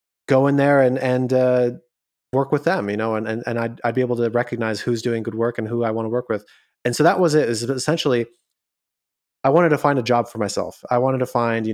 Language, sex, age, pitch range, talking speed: English, male, 30-49, 115-135 Hz, 265 wpm